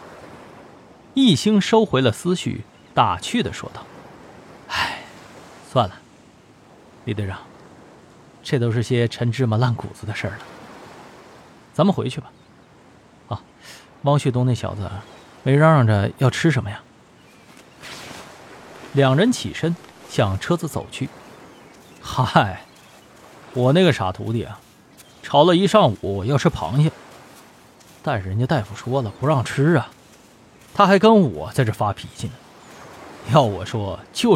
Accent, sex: native, male